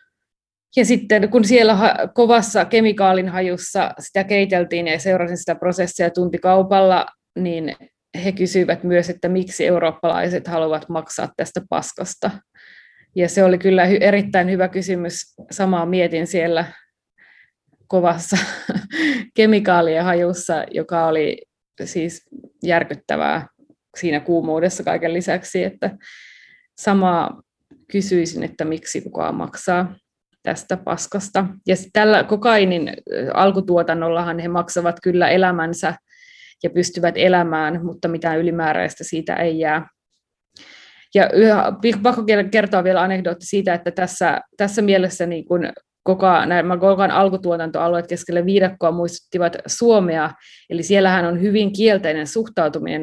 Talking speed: 110 wpm